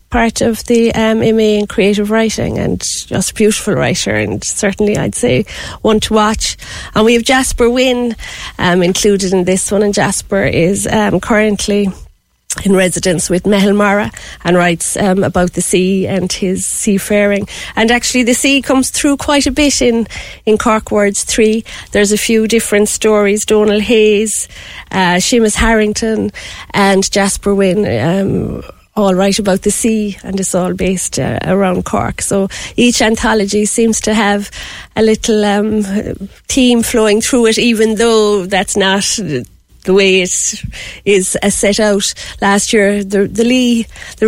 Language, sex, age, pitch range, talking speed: English, female, 30-49, 195-220 Hz, 160 wpm